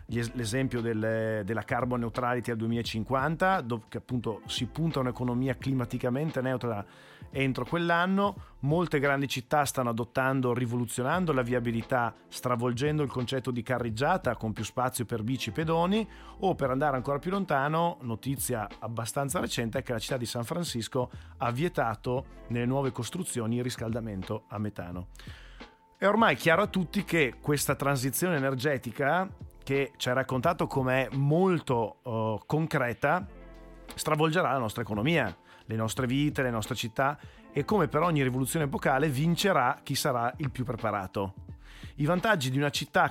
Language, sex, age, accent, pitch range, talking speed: Italian, male, 40-59, native, 120-145 Hz, 150 wpm